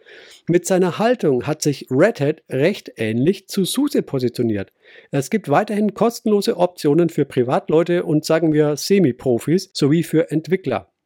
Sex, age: male, 50-69